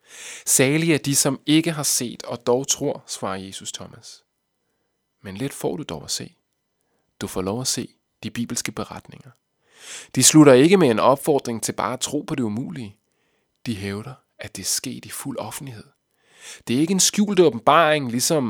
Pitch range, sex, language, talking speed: 110-155 Hz, male, Danish, 185 wpm